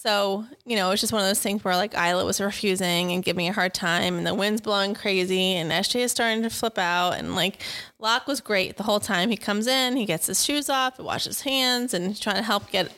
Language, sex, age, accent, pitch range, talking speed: English, female, 20-39, American, 200-245 Hz, 275 wpm